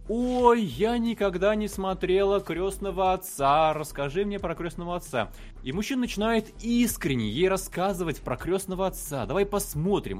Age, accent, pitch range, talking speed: 20-39, native, 140-195 Hz, 135 wpm